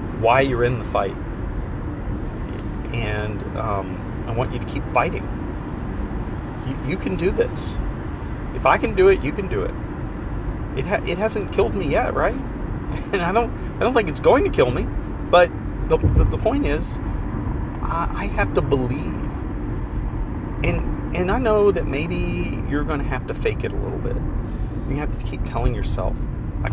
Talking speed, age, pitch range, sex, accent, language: 180 wpm, 30-49, 95-130 Hz, male, American, English